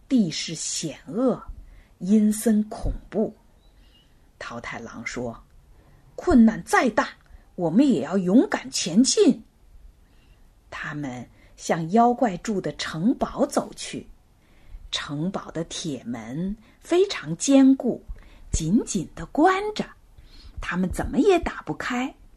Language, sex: Chinese, female